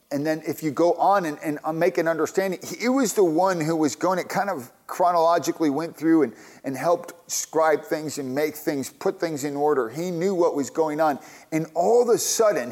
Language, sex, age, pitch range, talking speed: English, male, 40-59, 150-185 Hz, 225 wpm